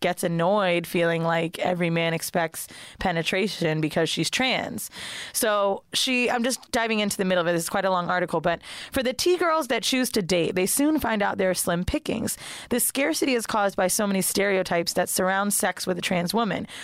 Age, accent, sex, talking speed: 20-39, American, female, 205 wpm